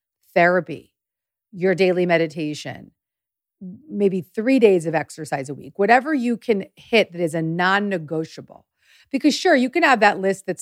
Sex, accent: female, American